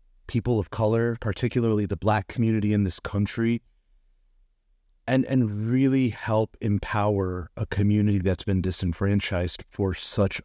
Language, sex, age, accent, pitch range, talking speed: English, male, 30-49, American, 90-115 Hz, 125 wpm